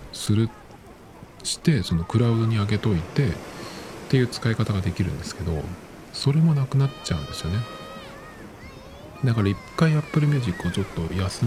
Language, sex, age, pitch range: Japanese, male, 40-59, 85-115 Hz